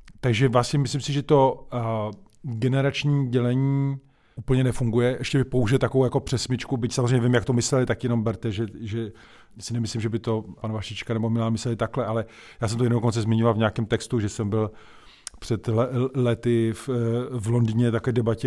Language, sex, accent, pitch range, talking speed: Czech, male, native, 110-120 Hz, 190 wpm